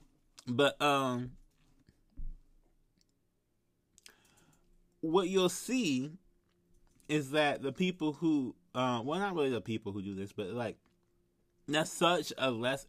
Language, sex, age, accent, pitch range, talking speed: English, male, 20-39, American, 95-150 Hz, 115 wpm